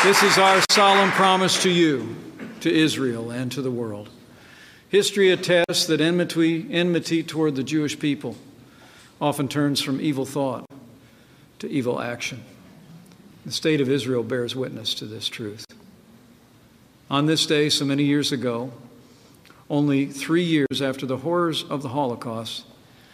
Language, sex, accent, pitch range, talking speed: English, male, American, 125-155 Hz, 145 wpm